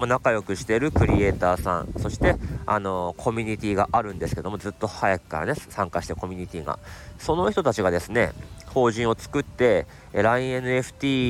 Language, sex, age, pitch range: Japanese, male, 40-59, 95-125 Hz